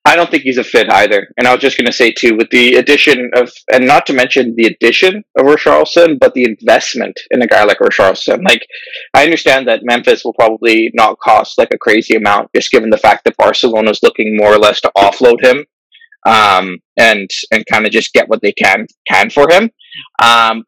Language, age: English, 20-39